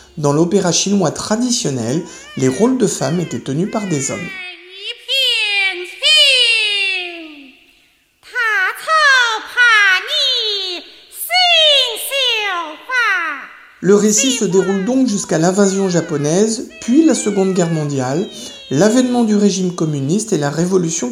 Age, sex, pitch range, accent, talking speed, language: 50-69, male, 160-255 Hz, French, 95 wpm, French